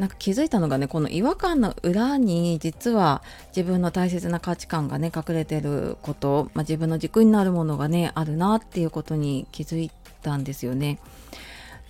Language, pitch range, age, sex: Japanese, 160-235 Hz, 30-49, female